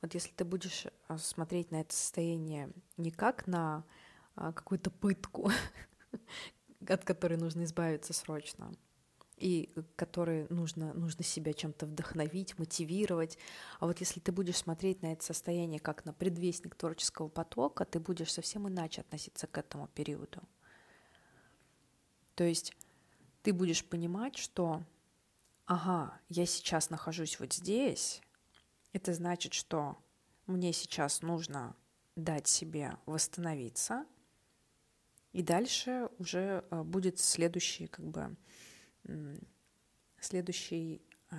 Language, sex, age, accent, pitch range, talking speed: Russian, female, 20-39, native, 160-185 Hz, 110 wpm